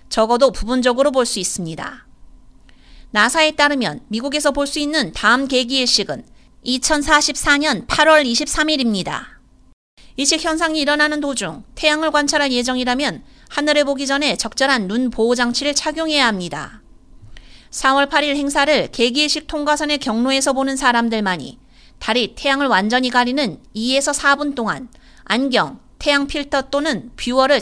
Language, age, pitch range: Korean, 30-49, 235-295 Hz